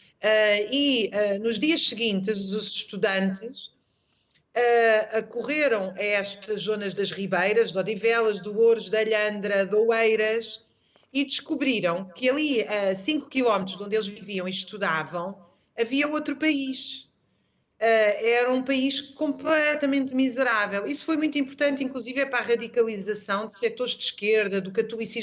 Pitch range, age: 200-260 Hz, 40-59